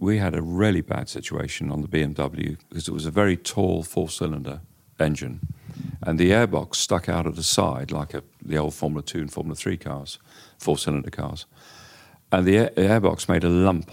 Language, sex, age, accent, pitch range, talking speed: English, male, 50-69, British, 80-95 Hz, 195 wpm